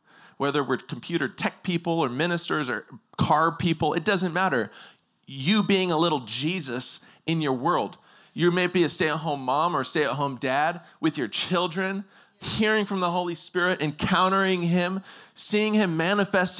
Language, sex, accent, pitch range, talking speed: English, male, American, 145-185 Hz, 155 wpm